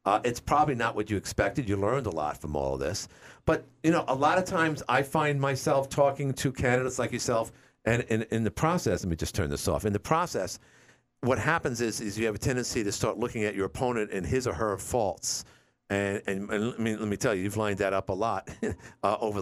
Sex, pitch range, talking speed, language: male, 115-155 Hz, 245 wpm, English